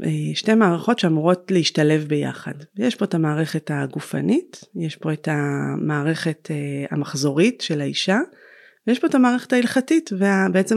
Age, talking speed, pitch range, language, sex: 30-49, 130 wpm, 160-210 Hz, Hebrew, female